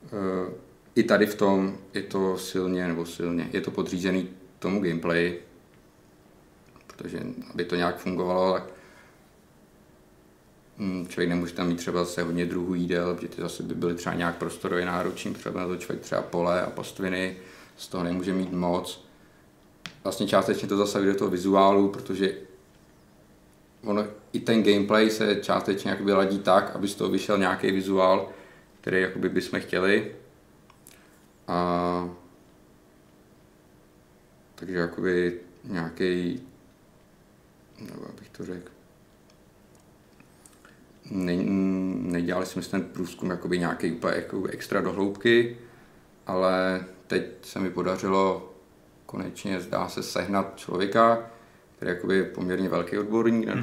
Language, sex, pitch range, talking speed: Czech, male, 85-95 Hz, 125 wpm